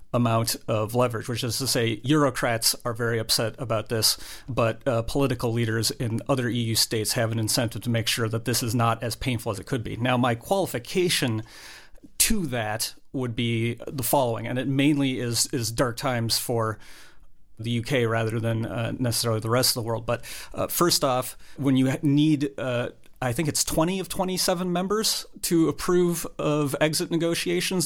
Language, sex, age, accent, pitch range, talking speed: English, male, 40-59, American, 115-145 Hz, 185 wpm